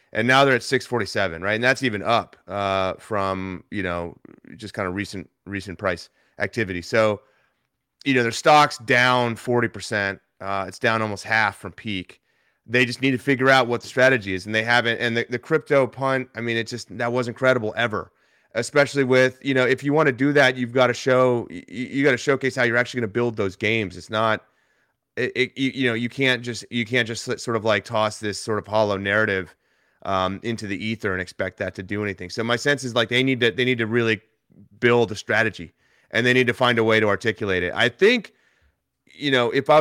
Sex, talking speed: male, 225 wpm